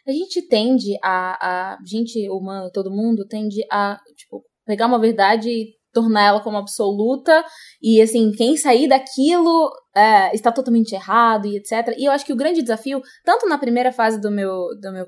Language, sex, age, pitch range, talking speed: Portuguese, female, 20-39, 200-275 Hz, 180 wpm